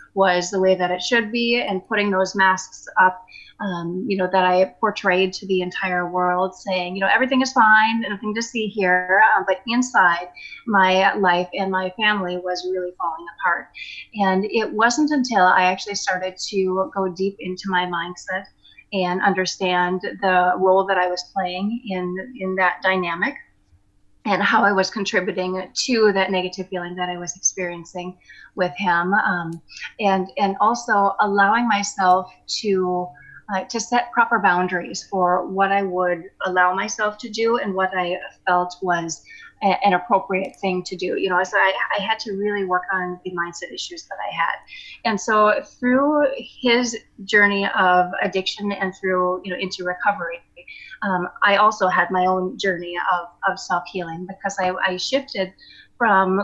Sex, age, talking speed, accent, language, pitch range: female, 30-49, 170 wpm, American, English, 180-210 Hz